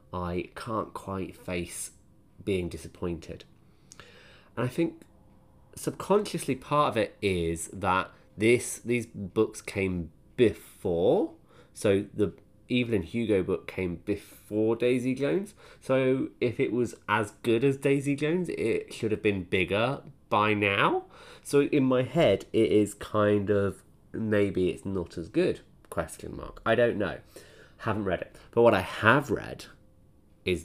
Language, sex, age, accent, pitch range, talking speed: English, male, 20-39, British, 85-115 Hz, 140 wpm